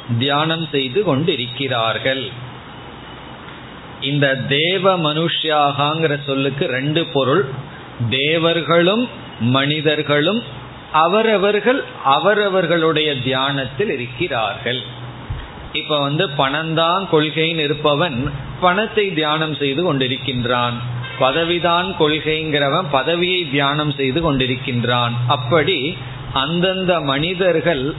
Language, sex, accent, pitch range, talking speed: Tamil, male, native, 130-165 Hz, 60 wpm